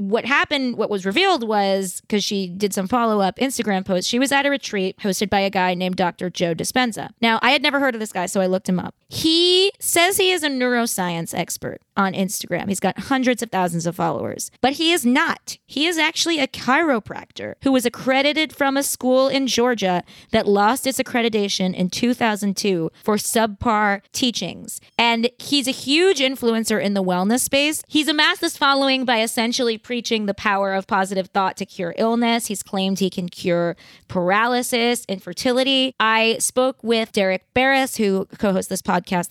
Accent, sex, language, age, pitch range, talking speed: American, female, English, 30-49, 185-250 Hz, 185 wpm